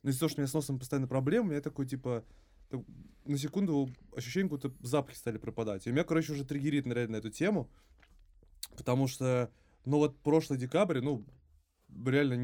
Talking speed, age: 185 wpm, 20-39